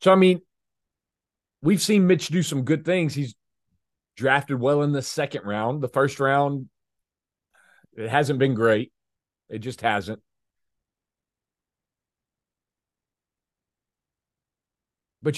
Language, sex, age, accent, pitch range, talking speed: English, male, 40-59, American, 95-130 Hz, 110 wpm